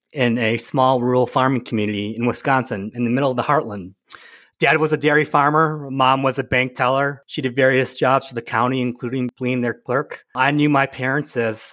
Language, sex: English, male